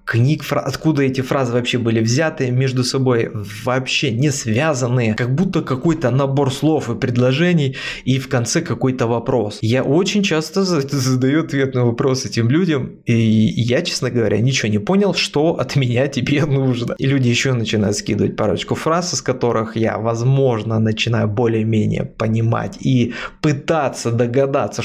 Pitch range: 115-140 Hz